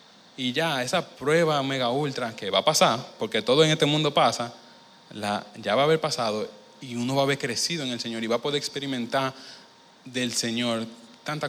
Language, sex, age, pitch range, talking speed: Spanish, male, 20-39, 115-145 Hz, 205 wpm